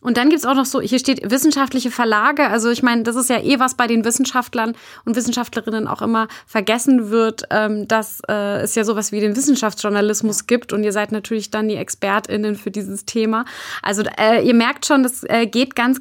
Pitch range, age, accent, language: 215-255 Hz, 20-39, German, German